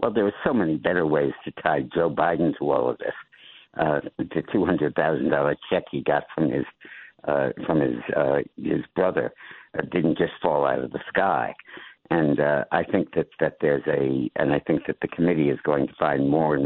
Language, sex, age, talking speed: English, male, 60-79, 215 wpm